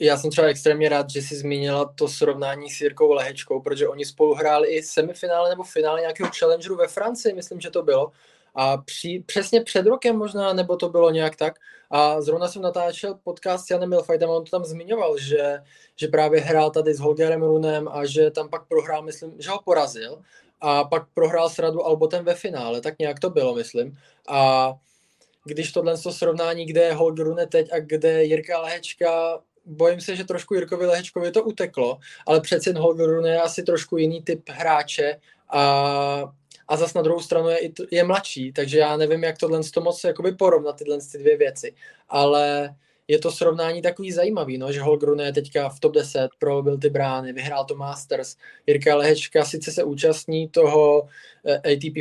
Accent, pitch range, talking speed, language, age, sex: native, 150-190 Hz, 180 wpm, Czech, 20-39, male